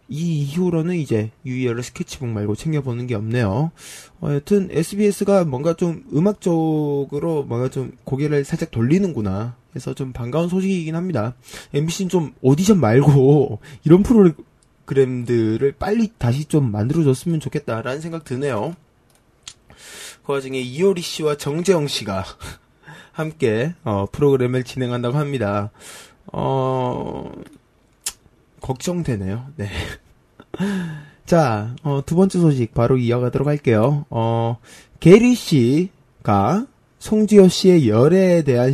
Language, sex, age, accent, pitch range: Korean, male, 20-39, native, 125-175 Hz